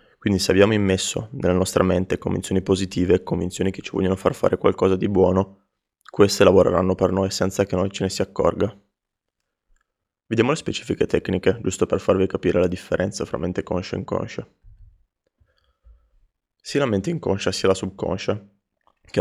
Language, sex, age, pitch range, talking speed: Italian, male, 20-39, 95-100 Hz, 160 wpm